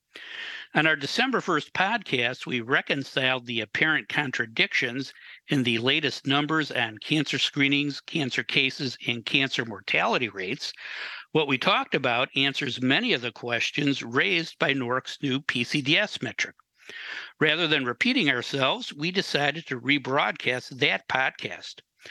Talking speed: 130 wpm